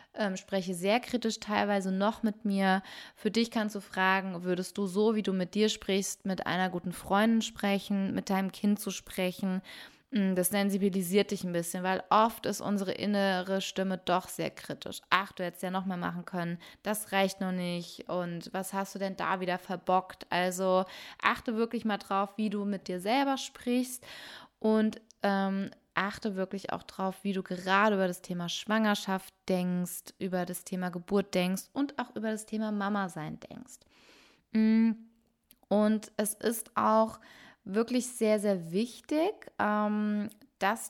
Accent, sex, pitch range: German, female, 190-220 Hz